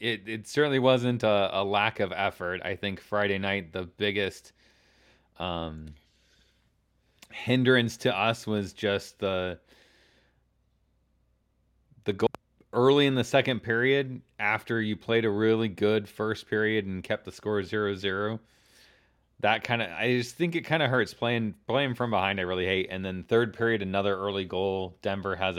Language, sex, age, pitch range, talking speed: English, male, 30-49, 90-115 Hz, 155 wpm